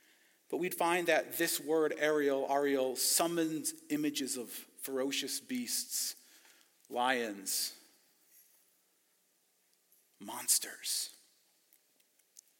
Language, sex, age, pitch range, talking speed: English, male, 40-59, 180-265 Hz, 70 wpm